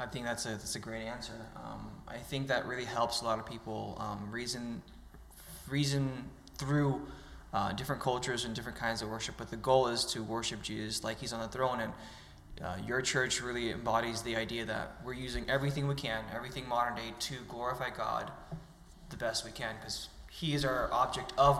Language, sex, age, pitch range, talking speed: English, male, 20-39, 110-135 Hz, 200 wpm